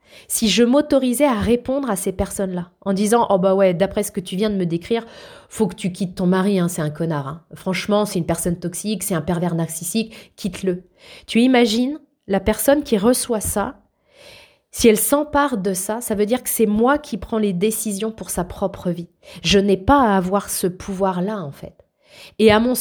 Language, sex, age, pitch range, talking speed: French, female, 20-39, 195-240 Hz, 210 wpm